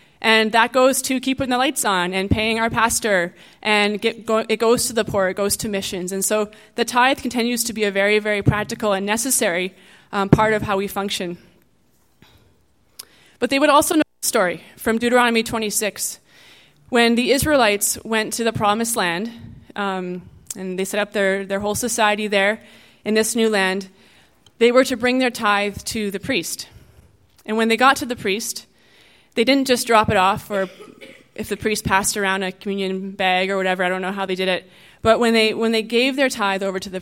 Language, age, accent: English, 20-39, American